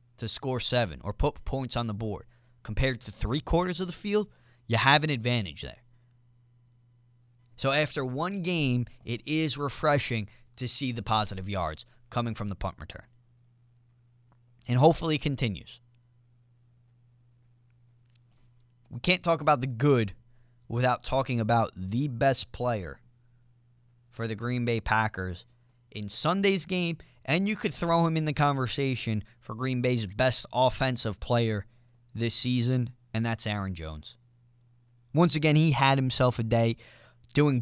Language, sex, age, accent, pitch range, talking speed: English, male, 20-39, American, 115-130 Hz, 145 wpm